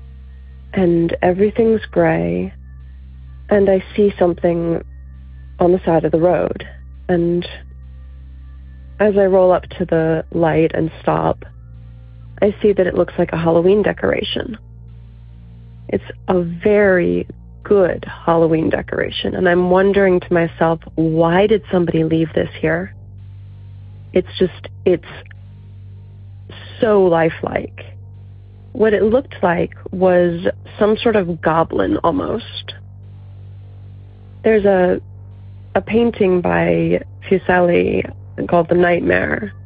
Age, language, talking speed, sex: 30-49, English, 110 wpm, female